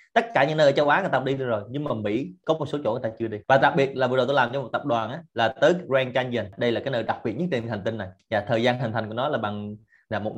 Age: 20-39